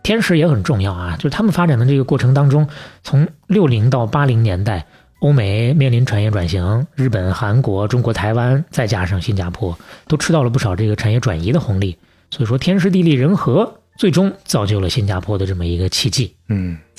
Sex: male